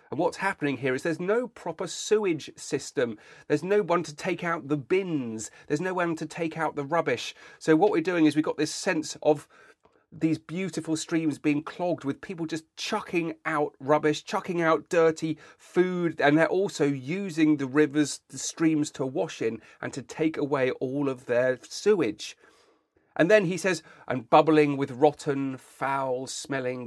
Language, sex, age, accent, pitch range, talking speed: English, male, 40-59, British, 140-175 Hz, 180 wpm